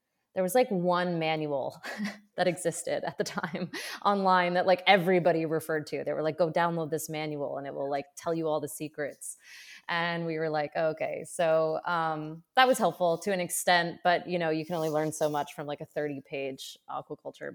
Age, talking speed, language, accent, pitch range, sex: 20-39, 205 wpm, English, American, 155-180 Hz, female